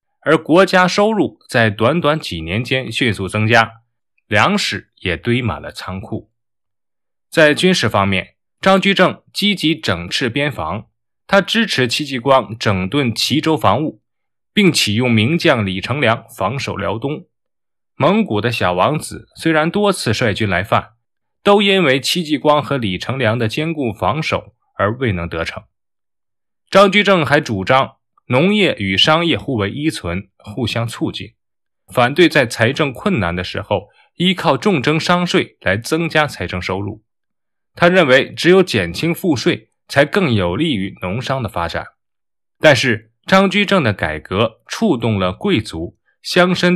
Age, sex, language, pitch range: 20-39, male, Chinese, 105-160 Hz